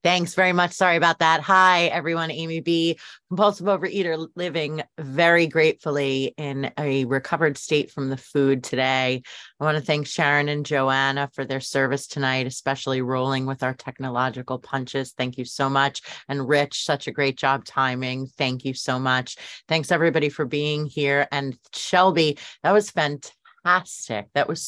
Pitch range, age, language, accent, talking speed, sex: 140-180 Hz, 30-49, English, American, 165 wpm, female